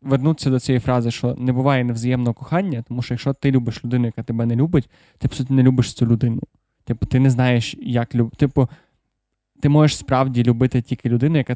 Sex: male